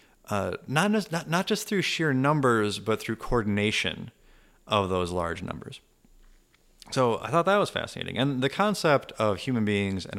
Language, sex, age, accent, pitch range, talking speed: English, male, 30-49, American, 95-125 Hz, 160 wpm